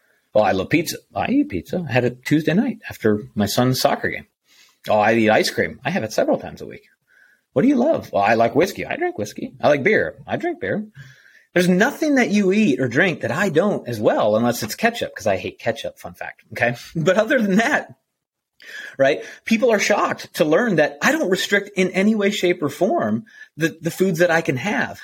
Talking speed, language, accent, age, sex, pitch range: 230 wpm, English, American, 30-49, male, 120-185 Hz